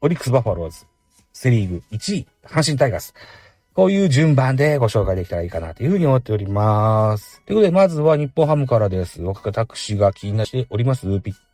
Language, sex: Japanese, male